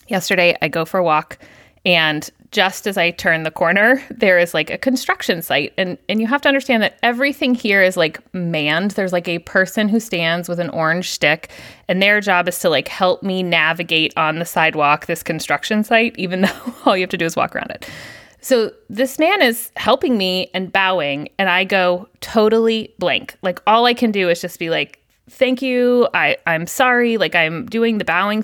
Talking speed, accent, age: 210 wpm, American, 30-49